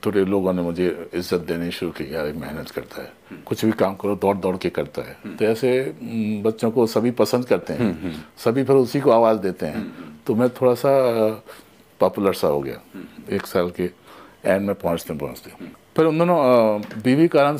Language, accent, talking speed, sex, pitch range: Hindi, native, 190 wpm, male, 90-115 Hz